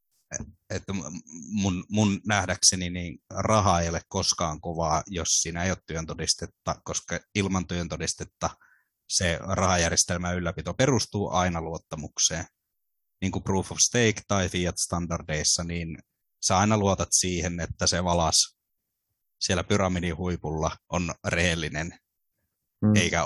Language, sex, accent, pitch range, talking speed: Finnish, male, native, 85-100 Hz, 120 wpm